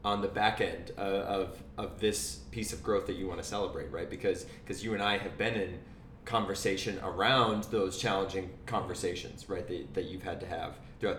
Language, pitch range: English, 95-115 Hz